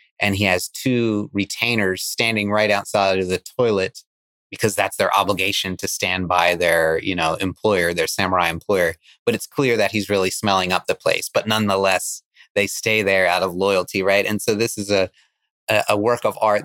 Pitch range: 95-115 Hz